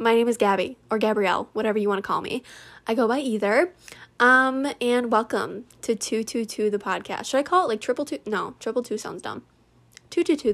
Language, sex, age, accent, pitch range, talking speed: English, female, 10-29, American, 205-270 Hz, 205 wpm